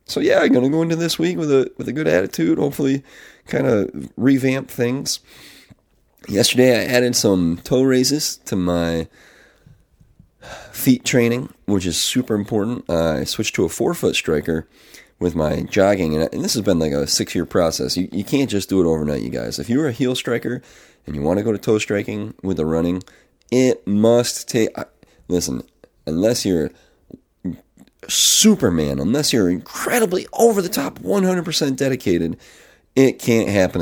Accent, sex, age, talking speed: American, male, 30-49, 170 wpm